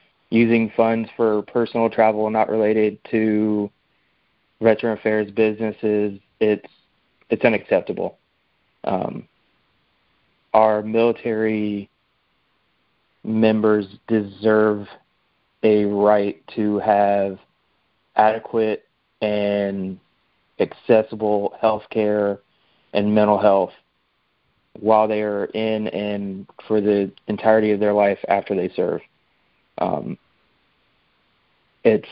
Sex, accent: male, American